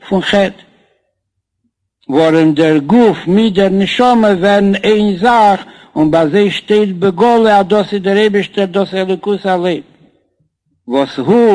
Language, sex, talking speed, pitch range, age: Hebrew, male, 125 wpm, 165-205 Hz, 60-79